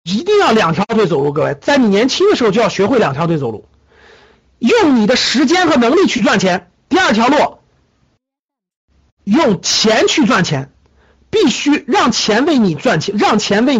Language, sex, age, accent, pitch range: Chinese, male, 50-69, native, 205-310 Hz